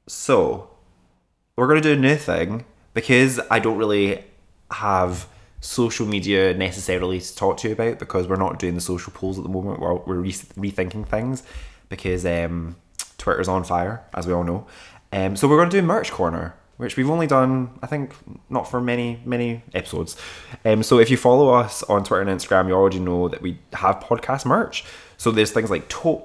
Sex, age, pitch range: male, 20-39, 90-115 Hz